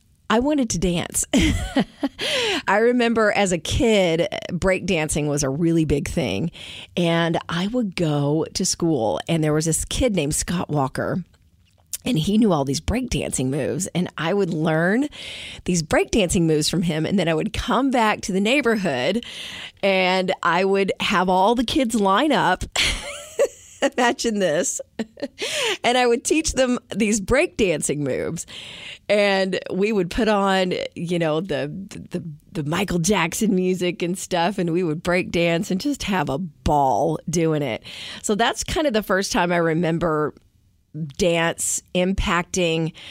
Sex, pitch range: female, 165-220 Hz